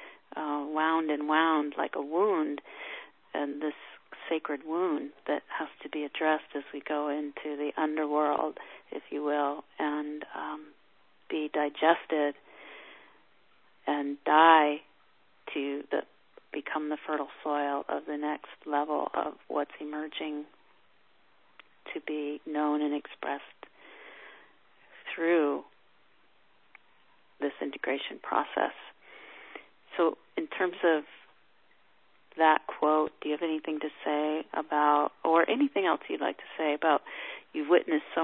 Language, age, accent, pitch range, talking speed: English, 40-59, American, 145-160 Hz, 120 wpm